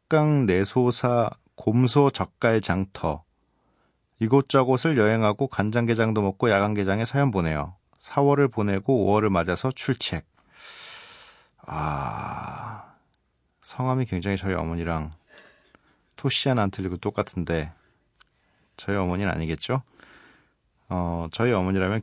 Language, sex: Korean, male